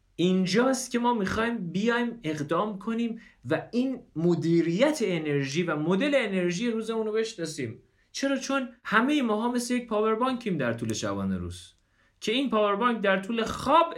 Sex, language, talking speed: male, Persian, 155 wpm